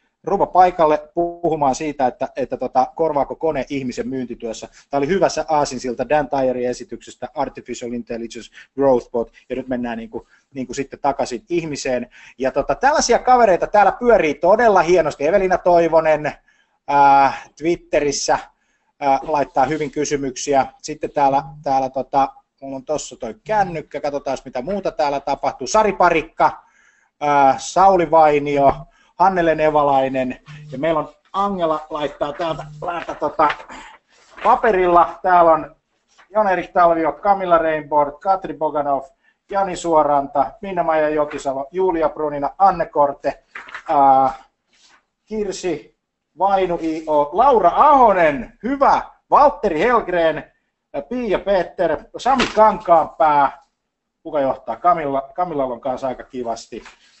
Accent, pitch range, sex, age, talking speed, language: native, 135-175 Hz, male, 20-39, 115 wpm, Finnish